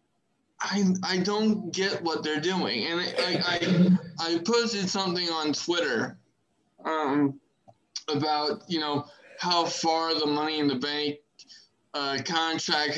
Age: 20-39